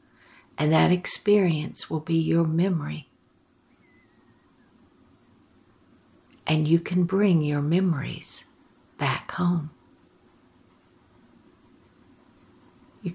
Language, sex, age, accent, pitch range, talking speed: English, female, 60-79, American, 160-180 Hz, 75 wpm